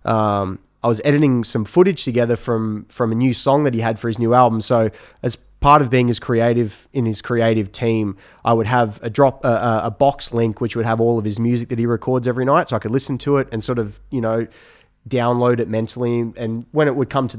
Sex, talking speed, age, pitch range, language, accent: male, 245 wpm, 20-39, 115-130 Hz, English, Australian